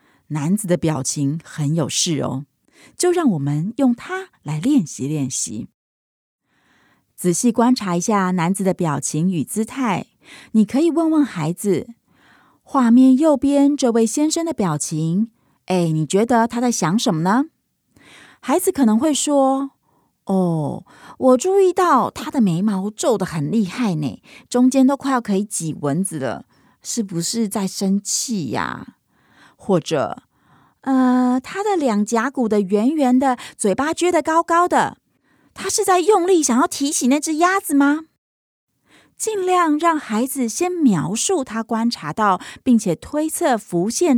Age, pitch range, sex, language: 30-49, 185-280 Hz, female, Chinese